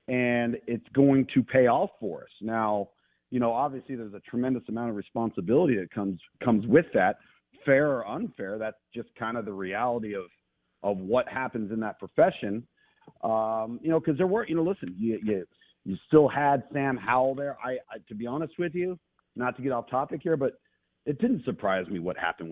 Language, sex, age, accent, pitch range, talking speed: English, male, 40-59, American, 110-135 Hz, 205 wpm